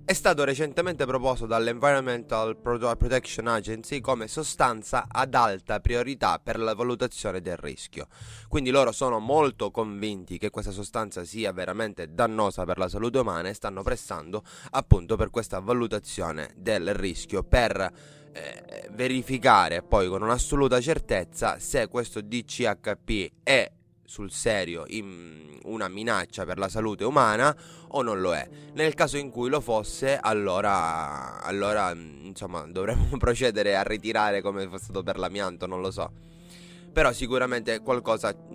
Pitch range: 100-130 Hz